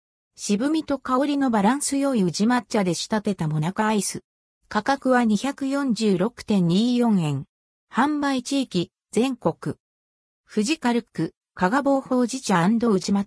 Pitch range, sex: 180-265 Hz, female